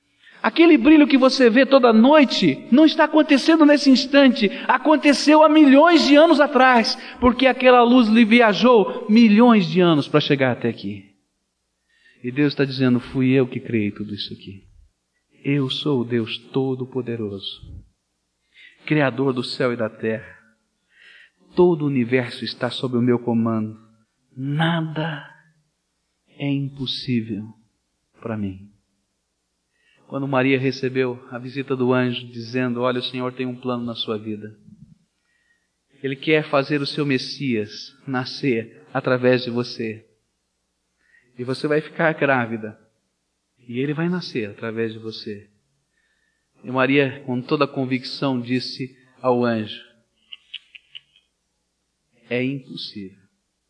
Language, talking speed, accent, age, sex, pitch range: Portuguese, 130 wpm, Brazilian, 40-59, male, 110-155 Hz